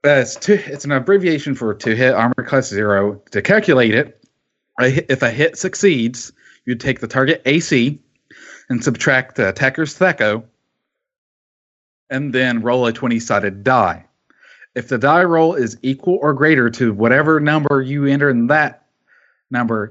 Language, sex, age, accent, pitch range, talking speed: English, male, 30-49, American, 115-145 Hz, 155 wpm